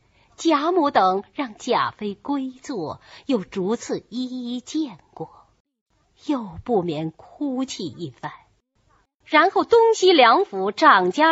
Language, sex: Chinese, female